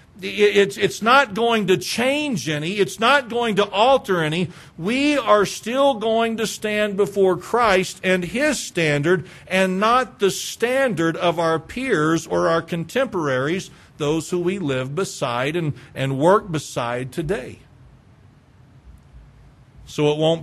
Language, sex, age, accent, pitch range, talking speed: English, male, 50-69, American, 155-215 Hz, 140 wpm